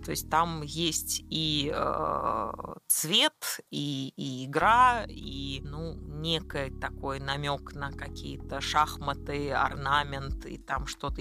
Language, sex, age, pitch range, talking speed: Russian, female, 20-39, 145-190 Hz, 120 wpm